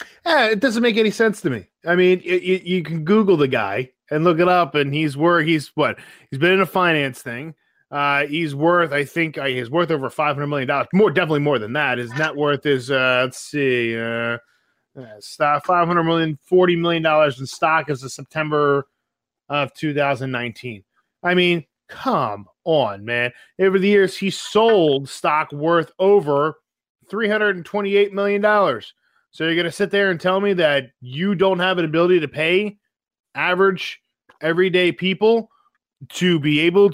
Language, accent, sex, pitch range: English, American, male, 145-195 Hz